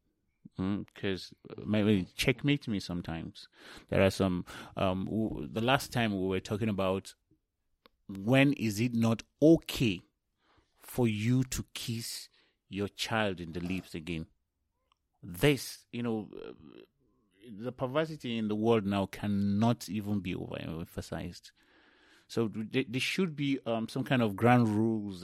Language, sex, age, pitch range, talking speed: English, male, 30-49, 100-145 Hz, 135 wpm